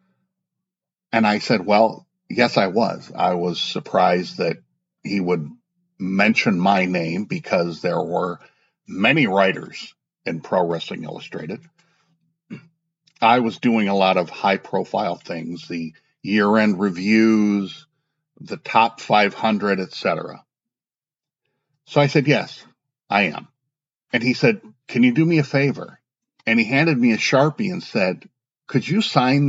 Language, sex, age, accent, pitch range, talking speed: English, male, 50-69, American, 105-150 Hz, 140 wpm